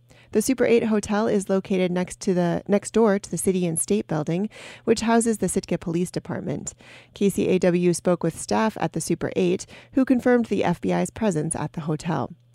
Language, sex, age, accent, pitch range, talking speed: English, female, 30-49, American, 170-210 Hz, 175 wpm